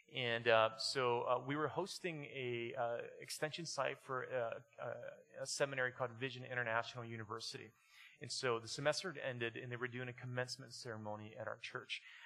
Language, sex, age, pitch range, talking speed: English, male, 30-49, 115-150 Hz, 175 wpm